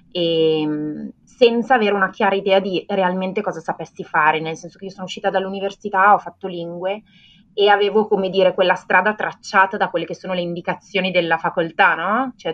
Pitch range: 160-200 Hz